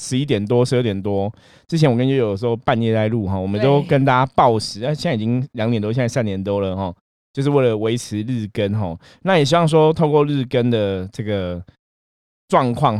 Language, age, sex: Chinese, 20-39, male